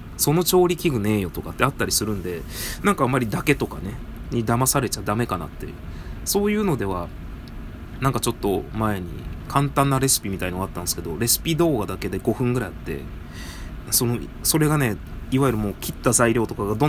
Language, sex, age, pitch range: Japanese, male, 20-39, 85-130 Hz